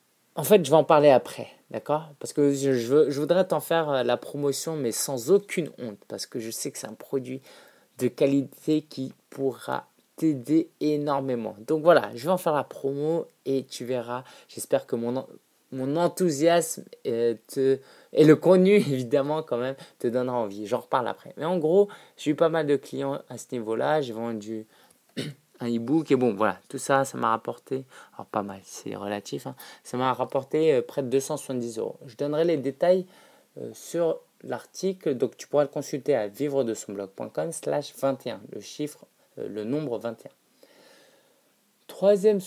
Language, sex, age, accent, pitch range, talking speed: French, male, 20-39, French, 125-160 Hz, 175 wpm